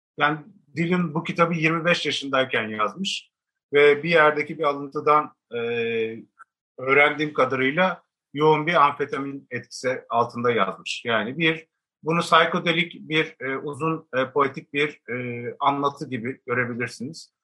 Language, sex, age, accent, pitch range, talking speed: Turkish, male, 50-69, native, 130-170 Hz, 120 wpm